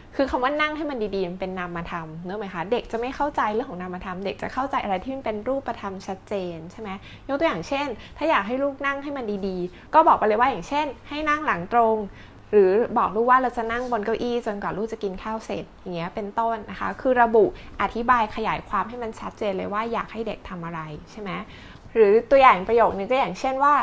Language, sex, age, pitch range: English, female, 20-39, 200-255 Hz